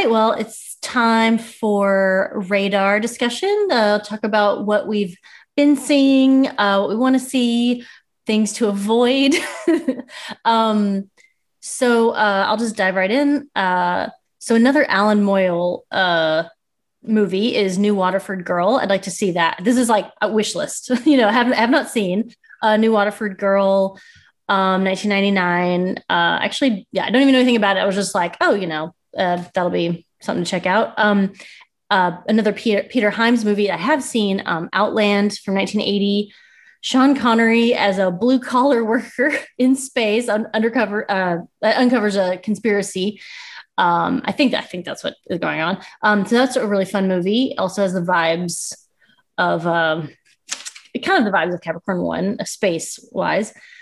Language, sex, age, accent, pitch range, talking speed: English, female, 30-49, American, 195-245 Hz, 165 wpm